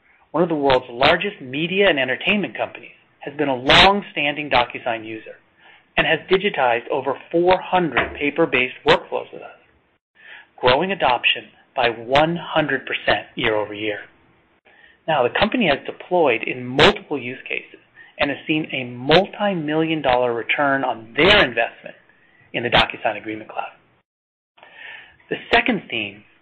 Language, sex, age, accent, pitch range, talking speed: English, male, 30-49, American, 125-170 Hz, 130 wpm